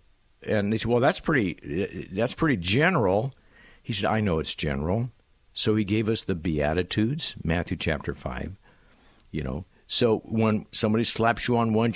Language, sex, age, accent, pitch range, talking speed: English, male, 60-79, American, 95-135 Hz, 165 wpm